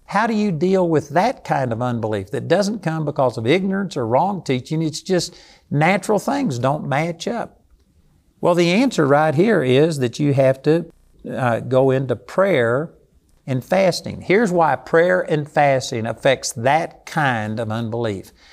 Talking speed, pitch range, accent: 165 wpm, 125-175 Hz, American